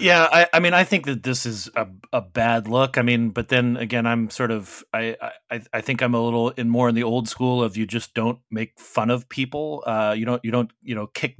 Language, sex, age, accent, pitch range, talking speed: English, male, 30-49, American, 110-125 Hz, 265 wpm